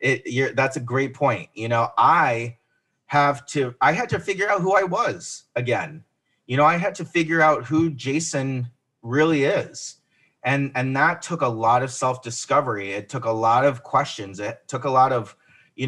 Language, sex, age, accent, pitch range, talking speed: English, male, 30-49, American, 120-145 Hz, 185 wpm